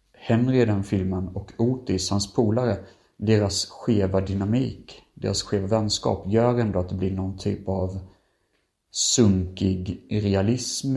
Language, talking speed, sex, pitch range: Swedish, 130 wpm, male, 95-115 Hz